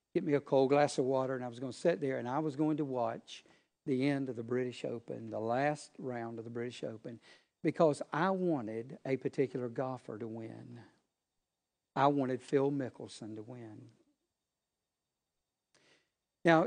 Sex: male